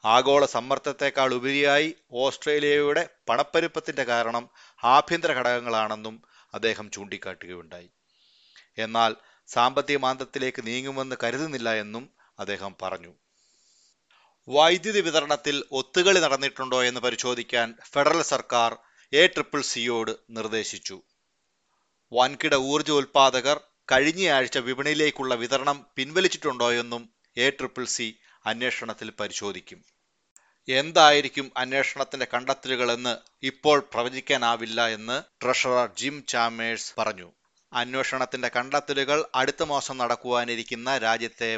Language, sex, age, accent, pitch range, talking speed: Malayalam, male, 30-49, native, 115-145 Hz, 80 wpm